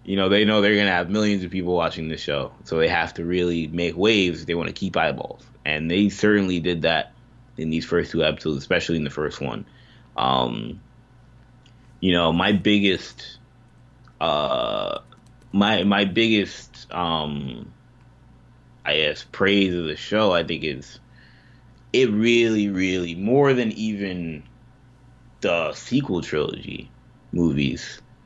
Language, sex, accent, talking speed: English, male, American, 150 wpm